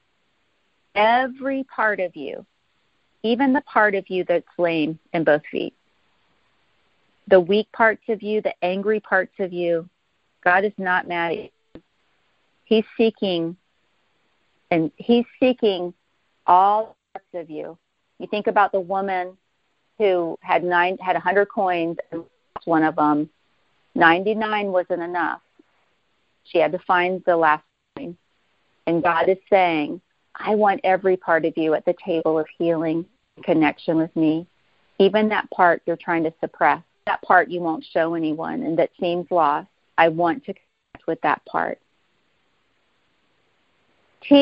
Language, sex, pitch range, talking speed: English, female, 170-210 Hz, 145 wpm